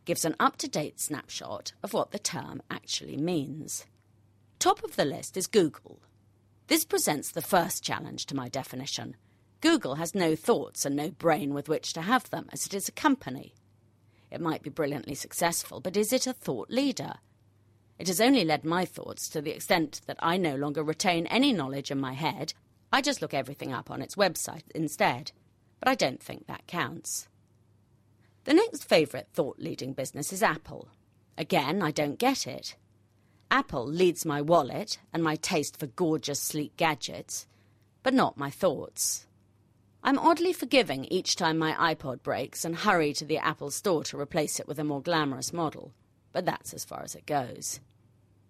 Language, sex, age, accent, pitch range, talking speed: English, female, 40-59, British, 135-185 Hz, 175 wpm